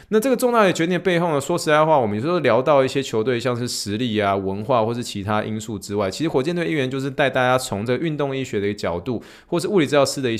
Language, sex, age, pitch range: Chinese, male, 20-39, 100-135 Hz